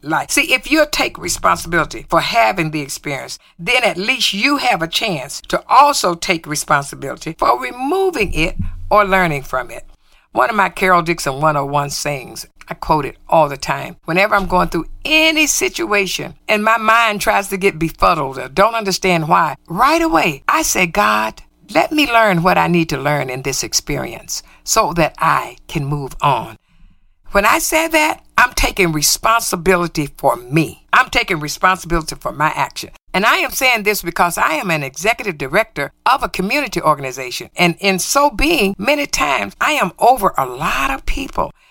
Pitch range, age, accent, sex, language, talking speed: 160-230 Hz, 60-79, American, female, English, 175 wpm